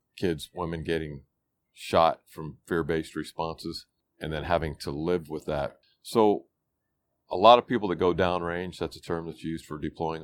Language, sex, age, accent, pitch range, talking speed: English, male, 40-59, American, 80-90 Hz, 170 wpm